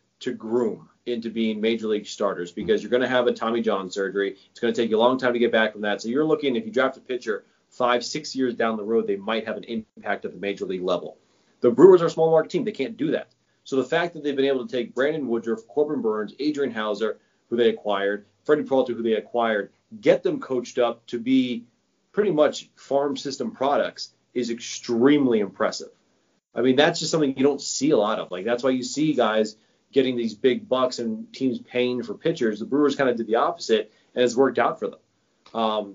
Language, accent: English, American